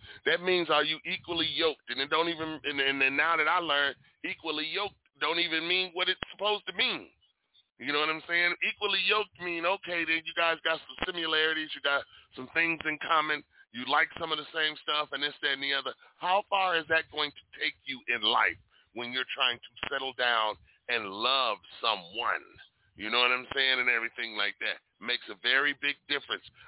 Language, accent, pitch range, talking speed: English, American, 140-175 Hz, 215 wpm